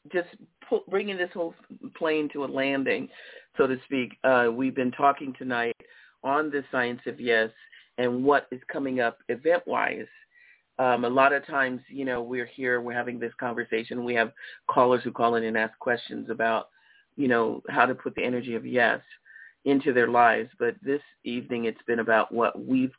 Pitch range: 115-140 Hz